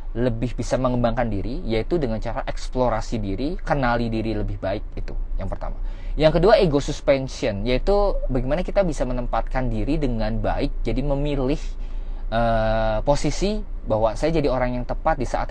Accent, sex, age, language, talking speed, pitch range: native, male, 20-39, Indonesian, 155 wpm, 110-140 Hz